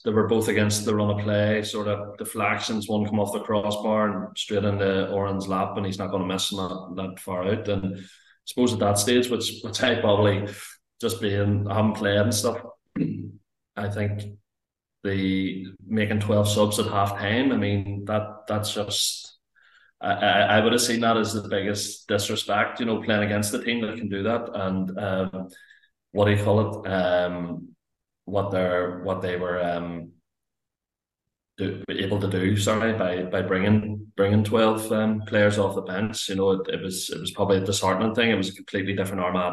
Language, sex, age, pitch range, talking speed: English, male, 20-39, 95-105 Hz, 195 wpm